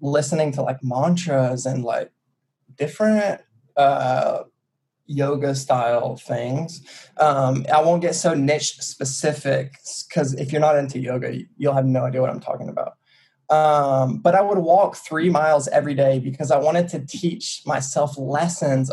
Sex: male